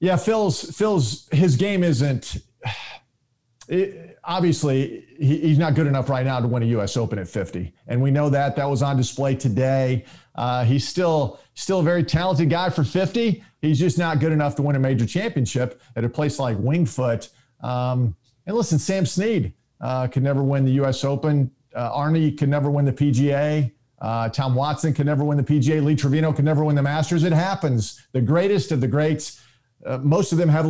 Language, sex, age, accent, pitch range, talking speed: English, male, 40-59, American, 130-160 Hz, 200 wpm